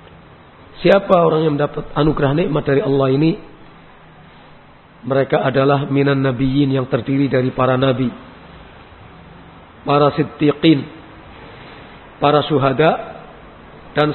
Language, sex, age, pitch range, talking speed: Malay, male, 50-69, 135-160 Hz, 100 wpm